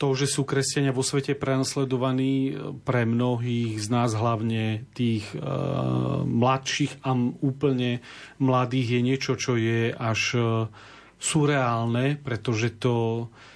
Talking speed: 125 wpm